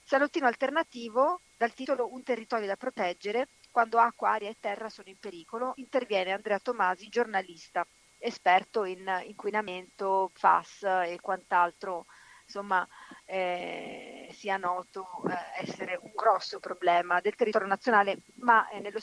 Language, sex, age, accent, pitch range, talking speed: Italian, female, 40-59, native, 185-230 Hz, 120 wpm